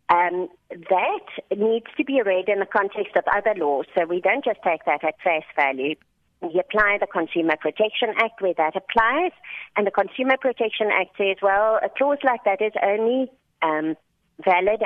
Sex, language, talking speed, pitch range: female, English, 180 wpm, 175-235 Hz